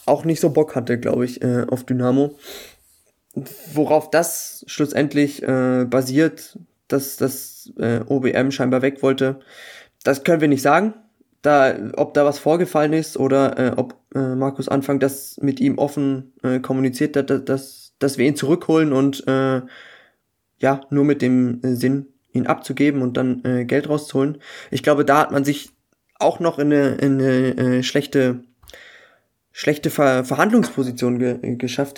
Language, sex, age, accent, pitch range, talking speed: German, male, 20-39, German, 125-145 Hz, 160 wpm